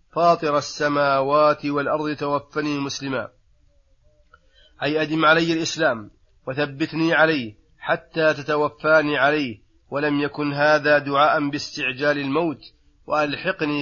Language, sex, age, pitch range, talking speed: Arabic, male, 30-49, 140-155 Hz, 90 wpm